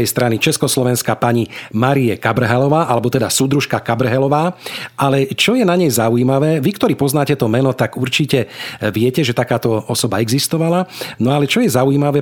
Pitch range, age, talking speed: 115-145 Hz, 40-59, 155 wpm